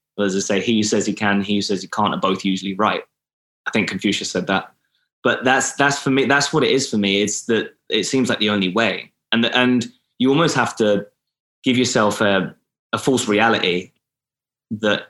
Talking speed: 210 wpm